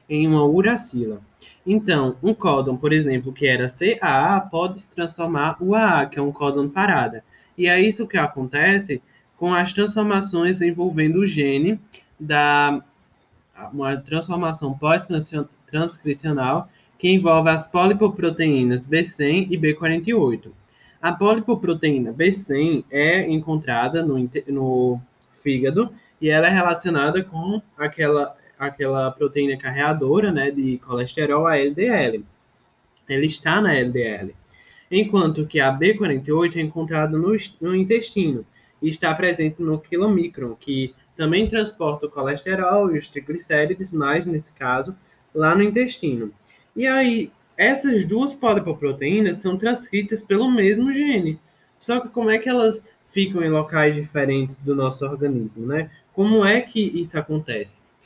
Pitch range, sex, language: 140-195 Hz, male, Portuguese